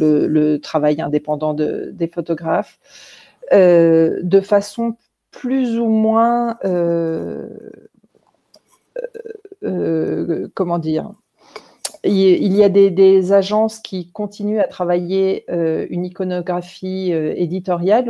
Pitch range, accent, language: 165-200 Hz, French, French